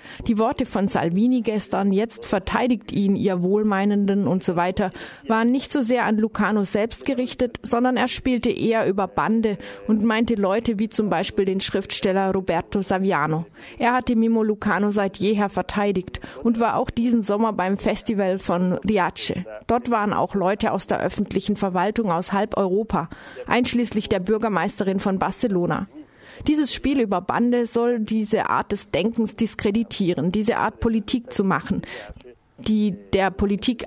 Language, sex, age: German, female, 30-49